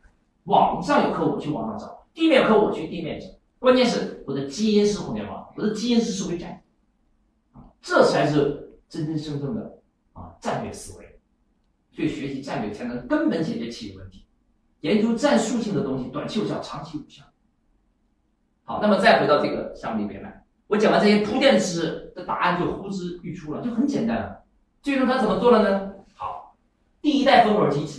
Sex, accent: male, native